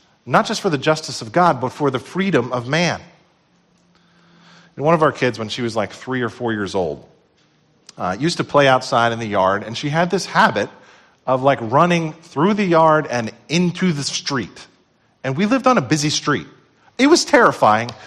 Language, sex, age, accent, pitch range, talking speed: English, male, 40-59, American, 135-180 Hz, 195 wpm